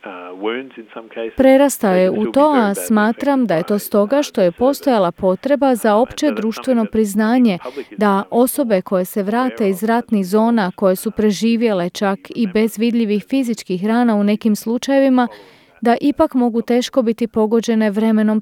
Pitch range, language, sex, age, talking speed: 205-245 Hz, Croatian, female, 40-59, 145 wpm